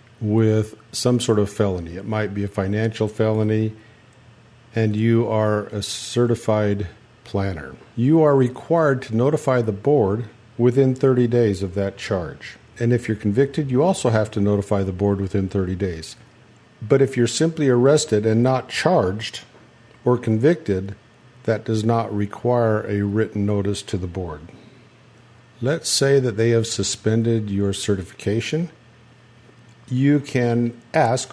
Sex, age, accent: male, 50-69, American